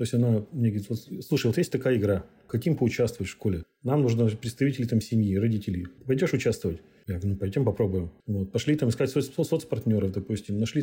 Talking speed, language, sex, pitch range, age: 205 wpm, Russian, male, 110-140 Hz, 40-59